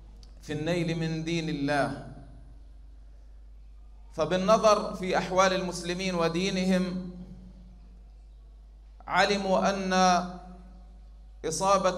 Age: 40-59